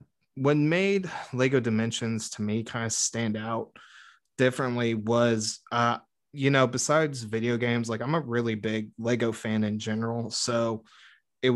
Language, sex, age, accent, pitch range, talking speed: English, male, 20-39, American, 115-130 Hz, 150 wpm